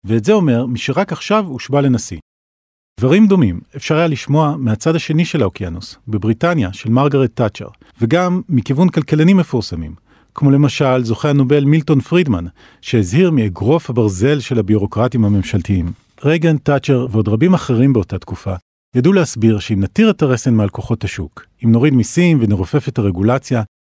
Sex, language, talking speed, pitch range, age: male, Hebrew, 145 wpm, 105-150 Hz, 40-59